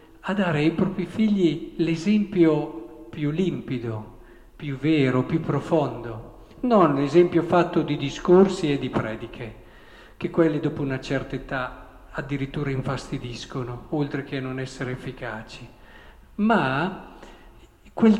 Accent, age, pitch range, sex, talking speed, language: native, 50-69, 135-190 Hz, male, 120 wpm, Italian